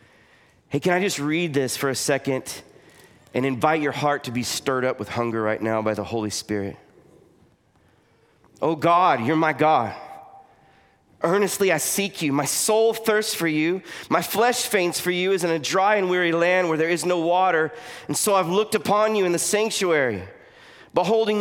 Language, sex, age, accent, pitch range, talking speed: English, male, 30-49, American, 145-195 Hz, 185 wpm